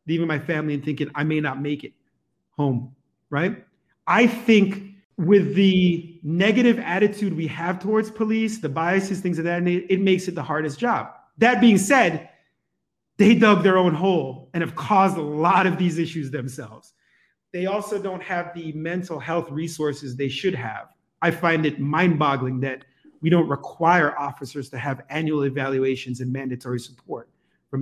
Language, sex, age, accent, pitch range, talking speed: English, male, 30-49, American, 145-190 Hz, 170 wpm